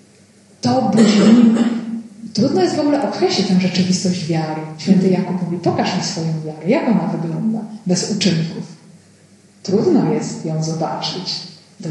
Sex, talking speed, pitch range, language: female, 140 wpm, 185-235 Hz, Polish